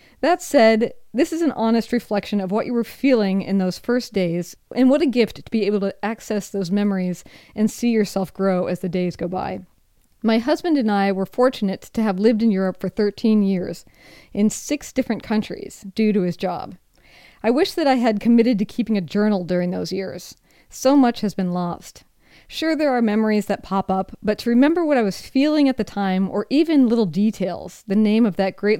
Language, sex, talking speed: English, female, 215 wpm